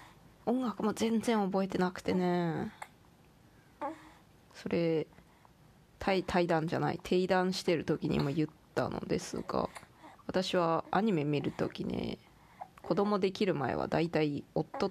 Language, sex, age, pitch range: Japanese, female, 20-39, 160-190 Hz